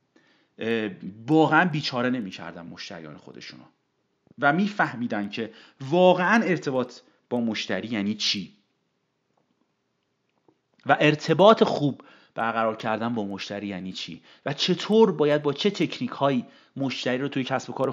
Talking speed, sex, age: 120 wpm, male, 30-49